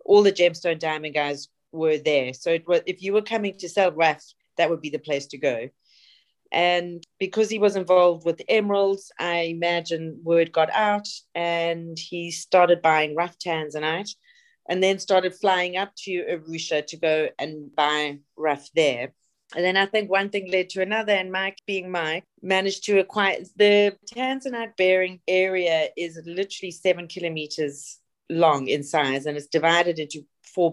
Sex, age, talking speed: female, 30-49, 165 wpm